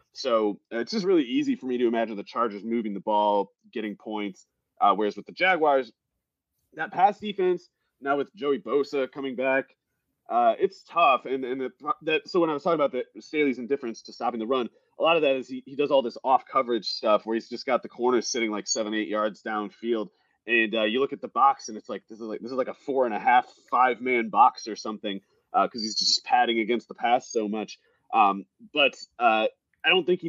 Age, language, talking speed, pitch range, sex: 30-49, English, 235 wpm, 115-185 Hz, male